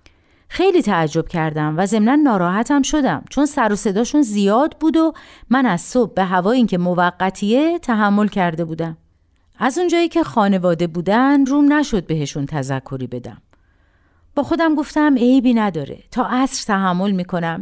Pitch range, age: 150-255 Hz, 50-69